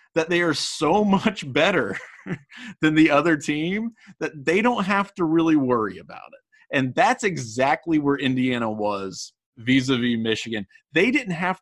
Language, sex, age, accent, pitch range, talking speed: English, male, 30-49, American, 115-155 Hz, 155 wpm